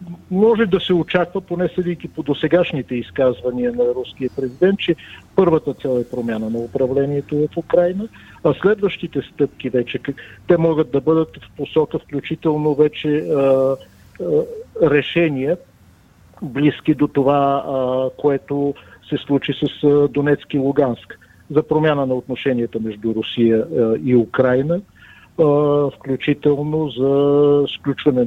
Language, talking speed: Bulgarian, 130 wpm